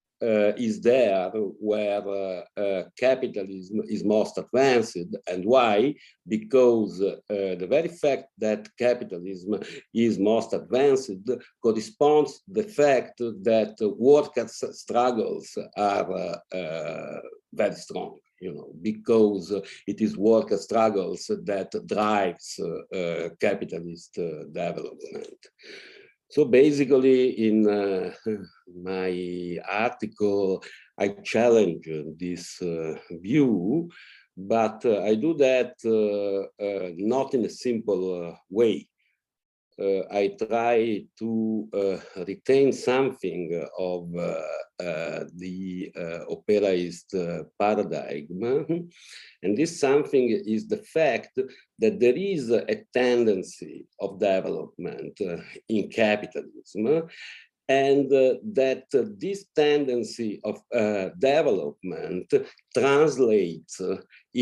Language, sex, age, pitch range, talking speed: English, male, 50-69, 100-130 Hz, 105 wpm